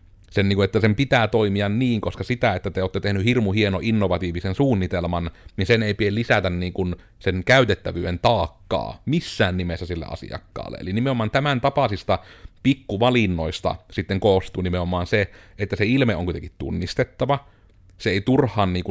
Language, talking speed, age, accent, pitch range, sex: Finnish, 145 wpm, 30-49, native, 90-110 Hz, male